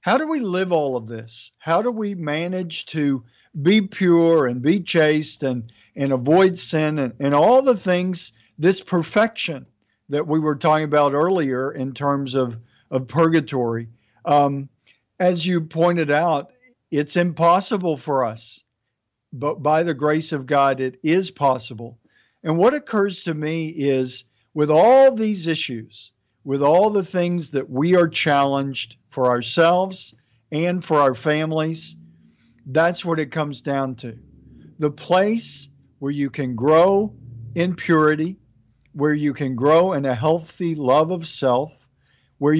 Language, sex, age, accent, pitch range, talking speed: English, male, 50-69, American, 130-170 Hz, 150 wpm